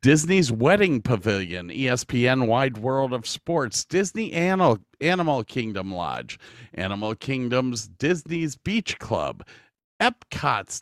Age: 40-59